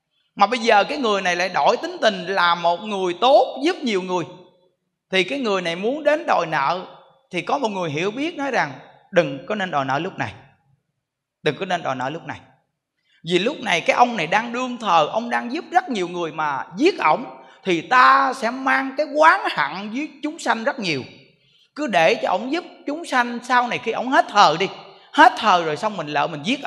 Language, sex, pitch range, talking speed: Vietnamese, male, 175-260 Hz, 225 wpm